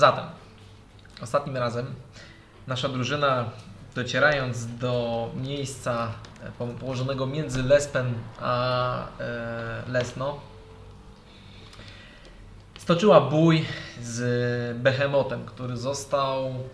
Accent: native